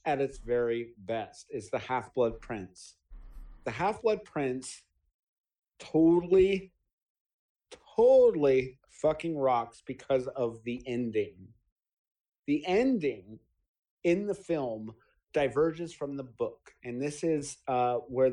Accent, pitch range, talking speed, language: American, 125-170 Hz, 110 wpm, English